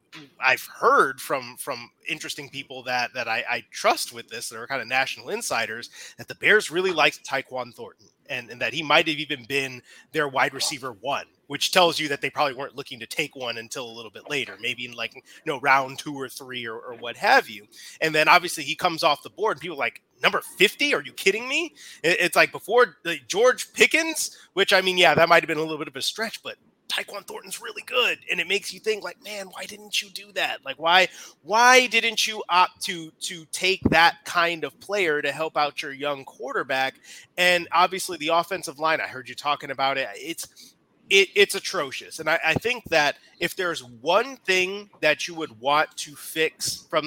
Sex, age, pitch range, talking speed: male, 30-49, 140-195 Hz, 220 wpm